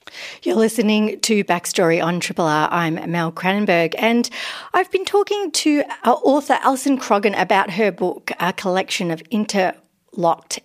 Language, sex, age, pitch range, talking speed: English, female, 40-59, 175-220 Hz, 145 wpm